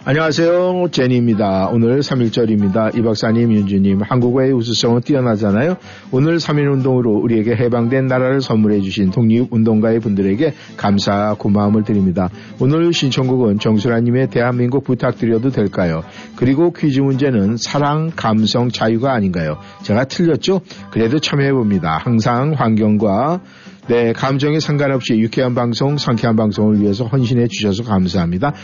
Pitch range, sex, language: 110-140 Hz, male, Korean